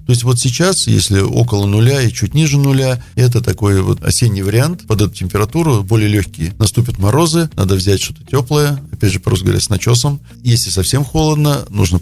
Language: Russian